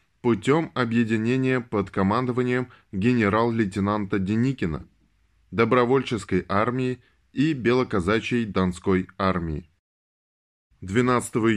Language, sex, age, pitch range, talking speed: Russian, male, 10-29, 100-130 Hz, 65 wpm